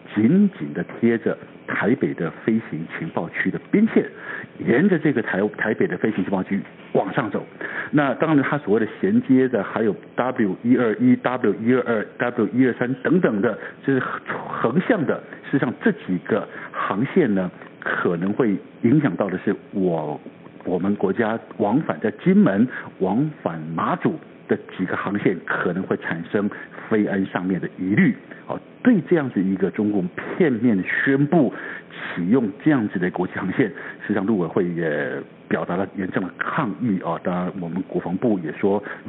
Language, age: Chinese, 60-79